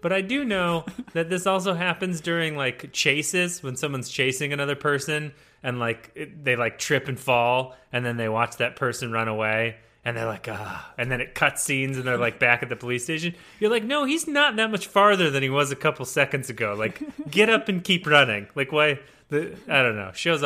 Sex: male